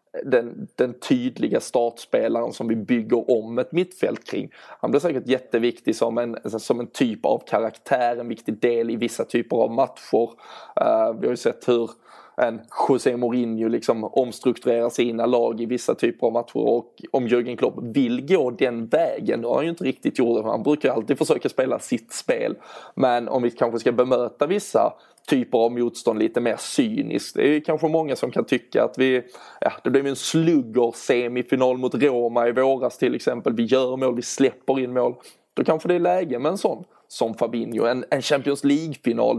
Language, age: English, 20-39